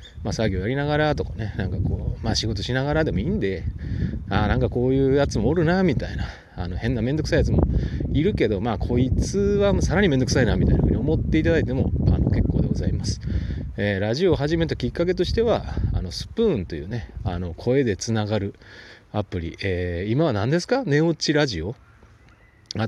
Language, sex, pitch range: Japanese, male, 90-140 Hz